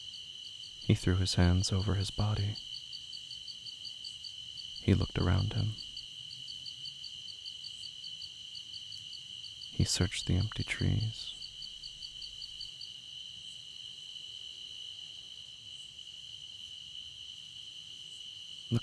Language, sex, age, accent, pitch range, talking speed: English, male, 40-59, American, 100-120 Hz, 55 wpm